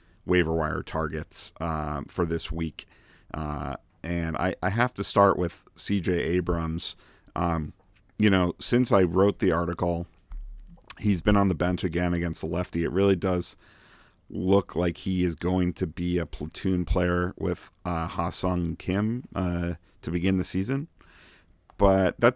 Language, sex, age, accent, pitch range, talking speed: English, male, 40-59, American, 85-95 Hz, 160 wpm